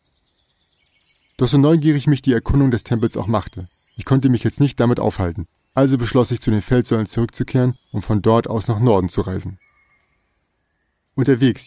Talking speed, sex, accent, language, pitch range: 170 wpm, male, German, German, 100-125 Hz